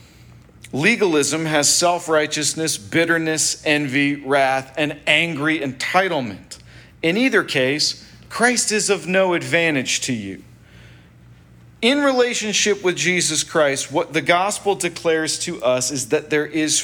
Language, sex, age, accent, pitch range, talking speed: English, male, 40-59, American, 135-170 Hz, 120 wpm